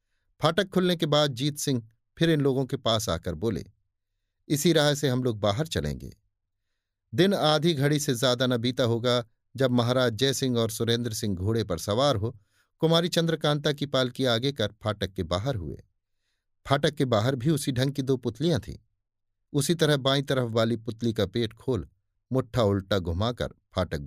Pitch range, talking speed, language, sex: 100-145 Hz, 175 wpm, Hindi, male